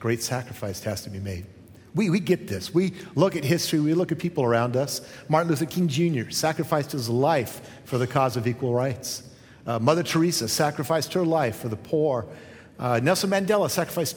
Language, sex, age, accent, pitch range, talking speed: English, male, 40-59, American, 115-160 Hz, 195 wpm